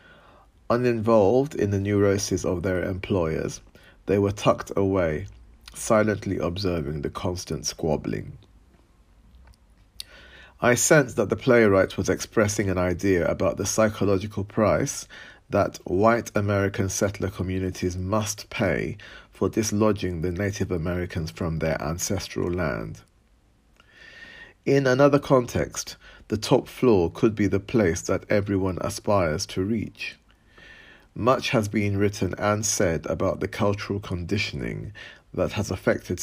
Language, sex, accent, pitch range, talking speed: English, male, British, 90-110 Hz, 120 wpm